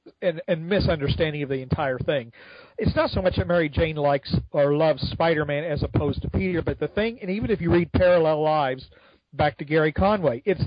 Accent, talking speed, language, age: American, 215 wpm, English, 40-59